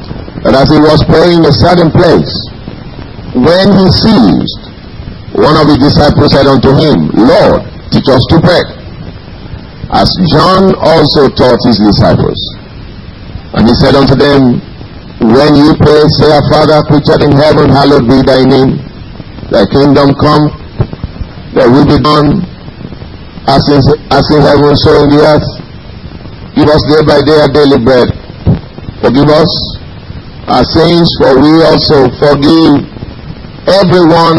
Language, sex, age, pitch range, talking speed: English, male, 50-69, 135-170 Hz, 140 wpm